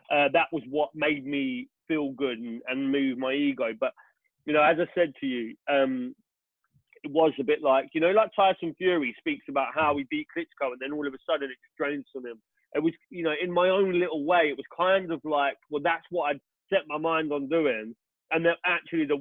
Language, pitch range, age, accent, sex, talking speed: English, 135-160 Hz, 30-49, British, male, 235 wpm